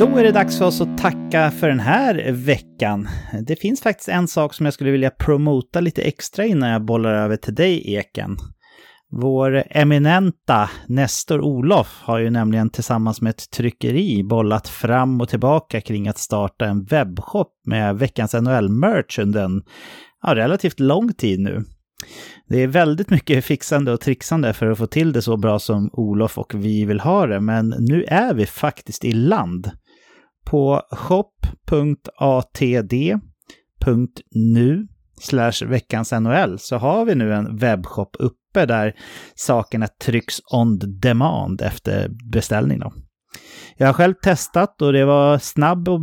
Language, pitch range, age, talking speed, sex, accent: English, 110-150 Hz, 30-49, 150 wpm, male, Swedish